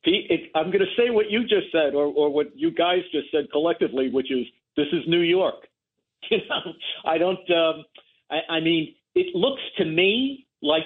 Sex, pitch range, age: male, 135-190 Hz, 50-69